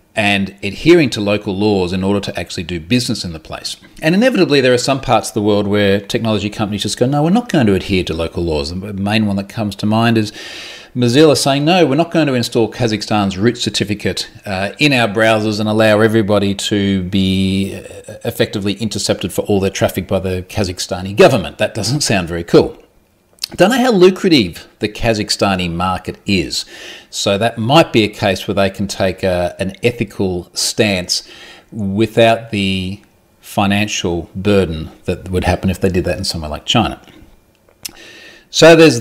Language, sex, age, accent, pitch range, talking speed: English, male, 40-59, Australian, 95-115 Hz, 180 wpm